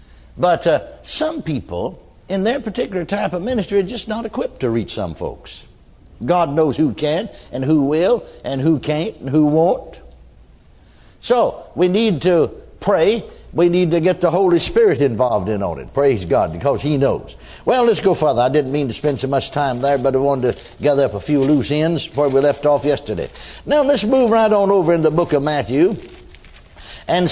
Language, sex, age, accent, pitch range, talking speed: English, male, 60-79, American, 140-210 Hz, 200 wpm